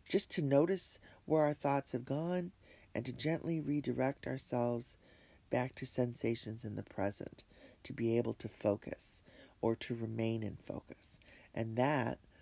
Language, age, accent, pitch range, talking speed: English, 40-59, American, 110-135 Hz, 150 wpm